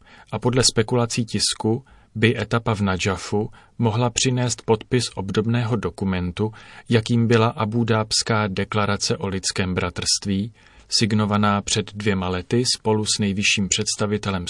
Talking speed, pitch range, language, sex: 115 wpm, 100-115 Hz, Czech, male